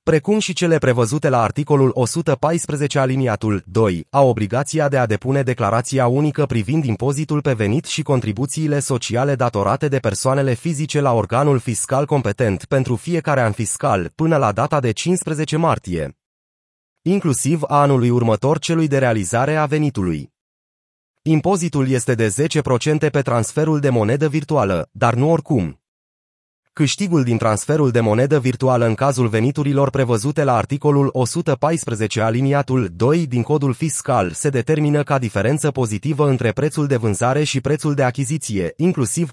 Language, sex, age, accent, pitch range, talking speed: Romanian, male, 30-49, native, 120-150 Hz, 145 wpm